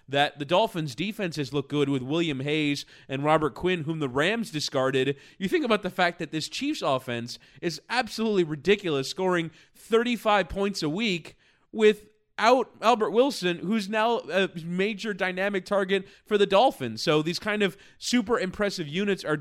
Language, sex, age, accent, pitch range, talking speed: English, male, 20-39, American, 140-180 Hz, 165 wpm